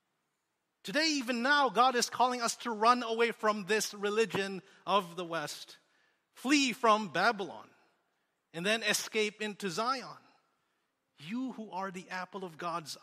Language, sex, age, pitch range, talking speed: English, male, 30-49, 165-215 Hz, 145 wpm